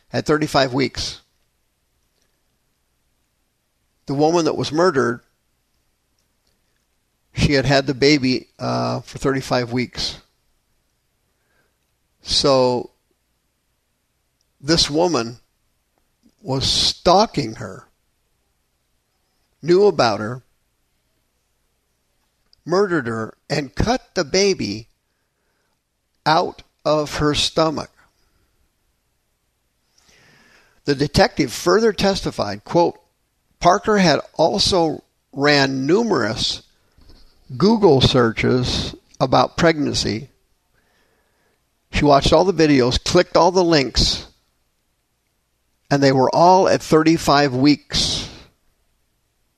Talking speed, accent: 80 wpm, American